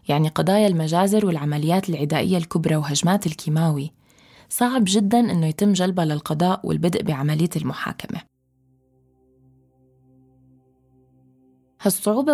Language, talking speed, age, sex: Arabic, 90 wpm, 20-39, female